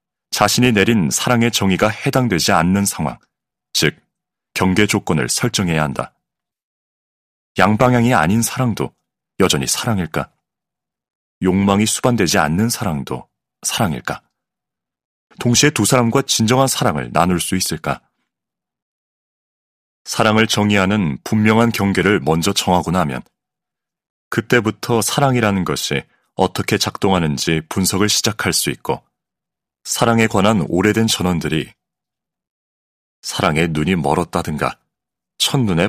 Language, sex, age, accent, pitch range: Korean, male, 30-49, native, 90-120 Hz